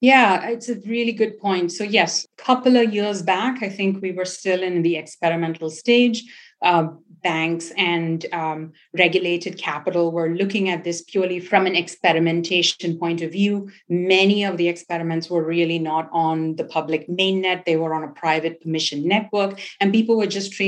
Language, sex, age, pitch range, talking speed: English, female, 30-49, 165-205 Hz, 175 wpm